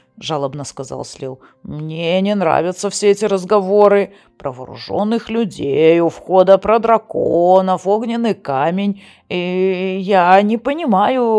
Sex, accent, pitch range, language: female, native, 140-225 Hz, Russian